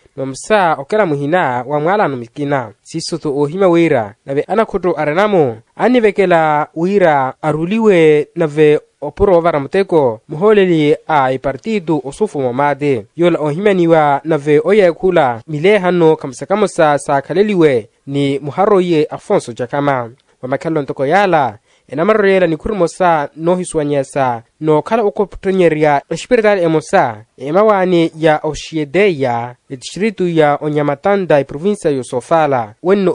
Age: 20-39